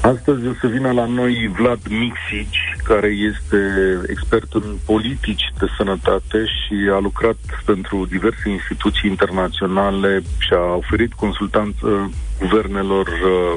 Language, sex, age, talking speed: Romanian, male, 40-59, 120 wpm